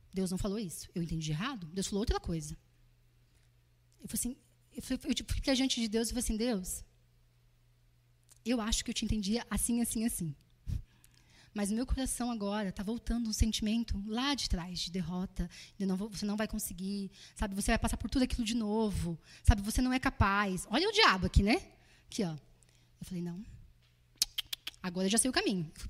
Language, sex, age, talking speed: Portuguese, female, 10-29, 200 wpm